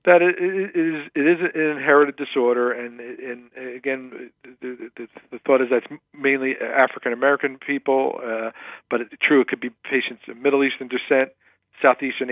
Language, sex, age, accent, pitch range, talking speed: English, male, 50-69, American, 115-135 Hz, 175 wpm